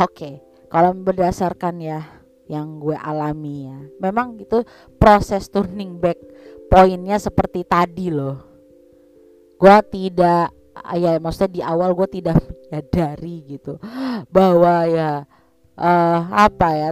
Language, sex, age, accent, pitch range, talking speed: Indonesian, female, 20-39, native, 150-185 Hz, 115 wpm